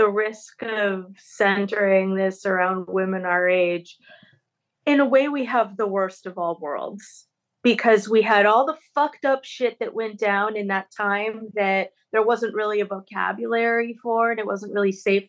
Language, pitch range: English, 195-245 Hz